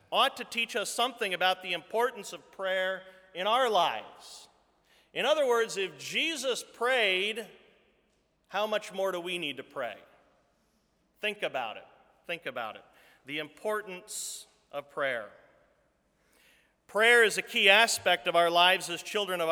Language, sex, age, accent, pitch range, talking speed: English, male, 40-59, American, 165-225 Hz, 150 wpm